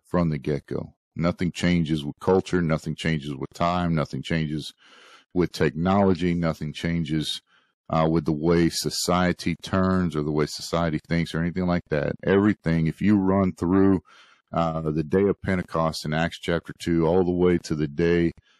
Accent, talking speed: American, 170 wpm